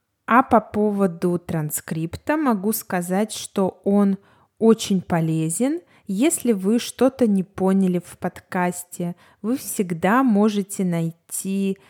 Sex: female